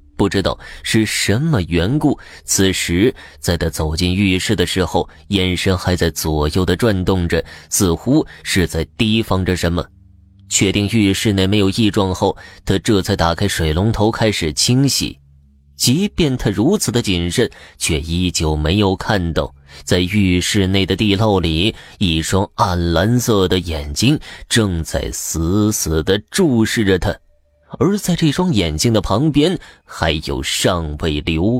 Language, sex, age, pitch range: Chinese, male, 20-39, 85-110 Hz